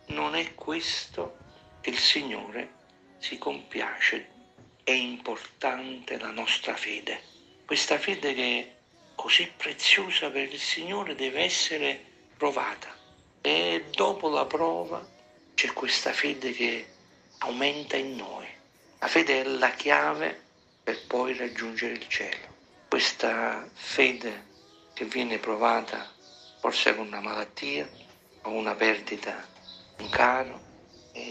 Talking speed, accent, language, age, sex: 115 wpm, native, Italian, 50-69, male